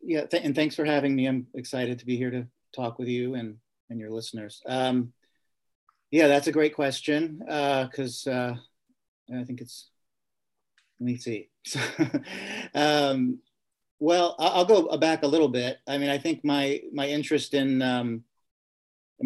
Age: 40-59